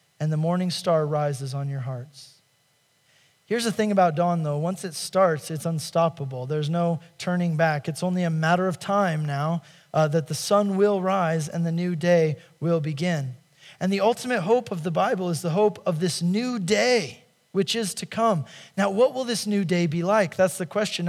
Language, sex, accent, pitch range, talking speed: English, male, American, 155-195 Hz, 200 wpm